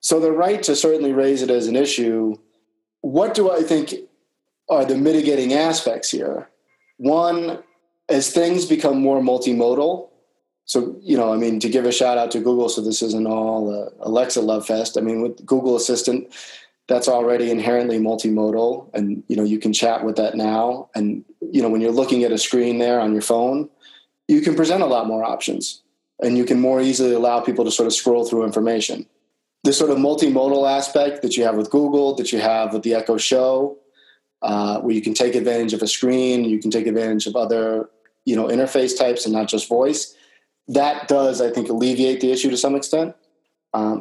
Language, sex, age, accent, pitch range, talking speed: English, male, 30-49, American, 115-145 Hz, 200 wpm